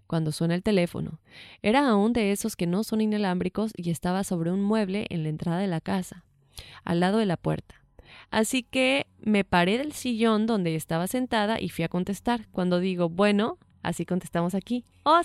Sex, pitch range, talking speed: female, 175-230 Hz, 190 wpm